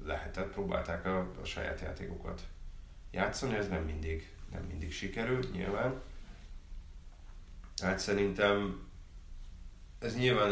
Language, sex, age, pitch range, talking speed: Hungarian, male, 30-49, 85-100 Hz, 105 wpm